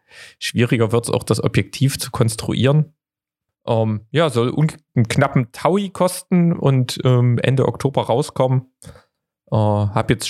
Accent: German